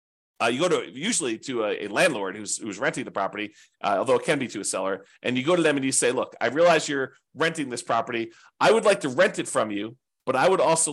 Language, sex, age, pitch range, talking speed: English, male, 40-59, 125-165 Hz, 270 wpm